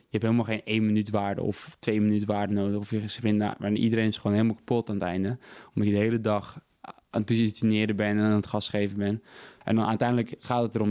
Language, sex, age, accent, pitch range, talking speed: Dutch, male, 20-39, Dutch, 105-115 Hz, 240 wpm